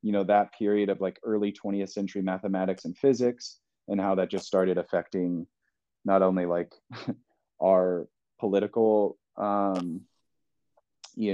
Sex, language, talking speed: male, English, 130 wpm